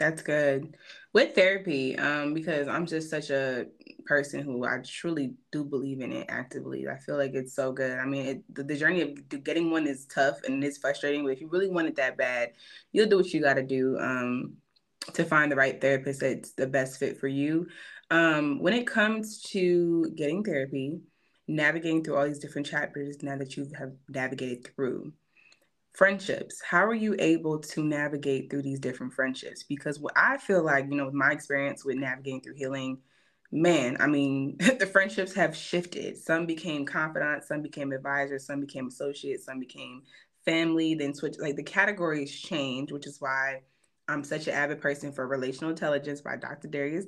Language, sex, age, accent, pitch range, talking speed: English, female, 20-39, American, 135-160 Hz, 185 wpm